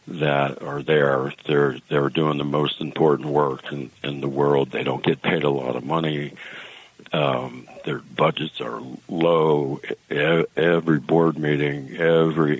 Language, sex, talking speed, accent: English, male, 155 wpm, American